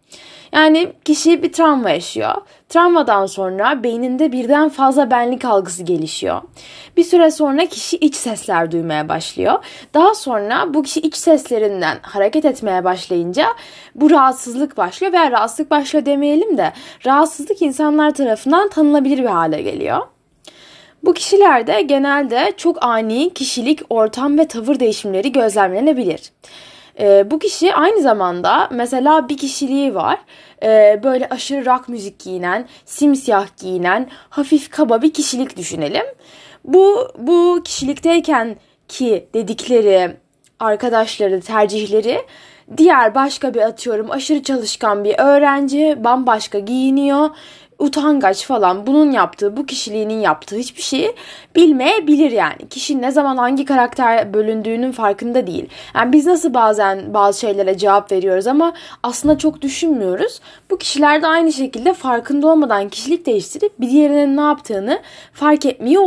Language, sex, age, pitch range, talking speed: Turkish, female, 10-29, 220-310 Hz, 130 wpm